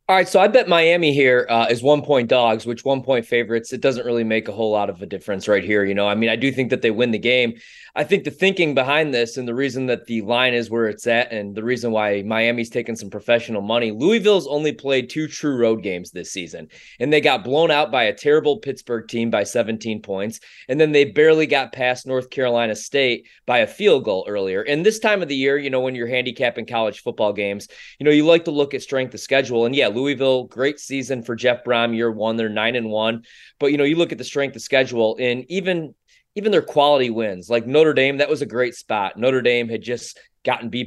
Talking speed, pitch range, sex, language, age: 250 wpm, 115-140 Hz, male, English, 20-39